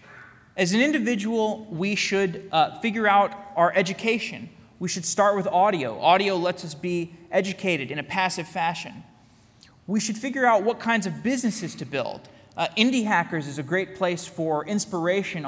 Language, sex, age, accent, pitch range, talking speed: English, male, 20-39, American, 165-215 Hz, 165 wpm